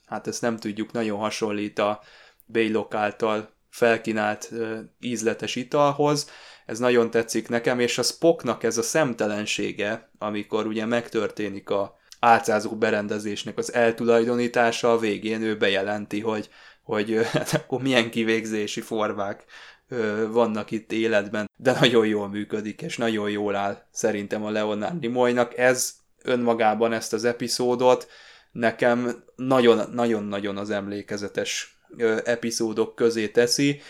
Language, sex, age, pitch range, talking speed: Hungarian, male, 20-39, 105-120 Hz, 125 wpm